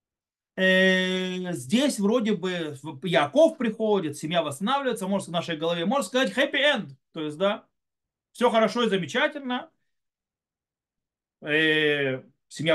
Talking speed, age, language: 110 wpm, 30-49, Russian